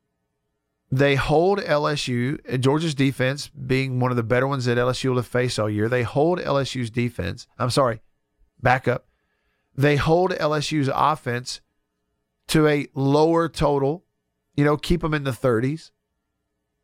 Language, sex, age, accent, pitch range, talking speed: English, male, 50-69, American, 120-155 Hz, 150 wpm